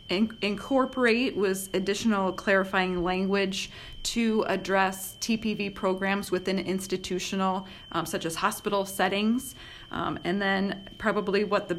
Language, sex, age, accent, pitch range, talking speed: English, female, 30-49, American, 175-200 Hz, 110 wpm